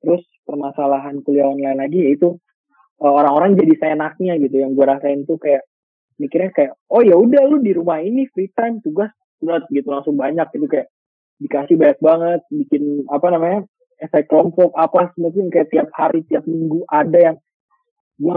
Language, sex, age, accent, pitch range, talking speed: Indonesian, male, 20-39, native, 145-190 Hz, 165 wpm